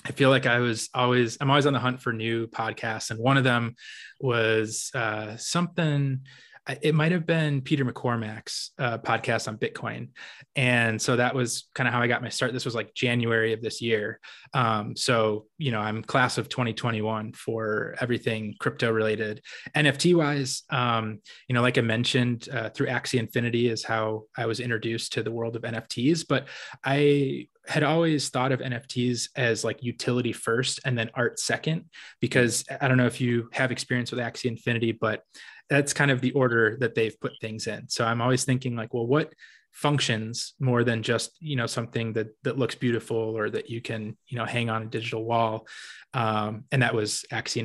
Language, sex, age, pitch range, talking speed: English, male, 20-39, 110-130 Hz, 195 wpm